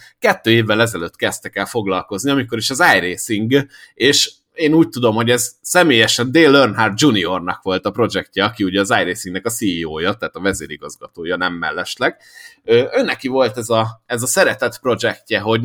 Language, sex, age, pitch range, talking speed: Hungarian, male, 30-49, 105-135 Hz, 165 wpm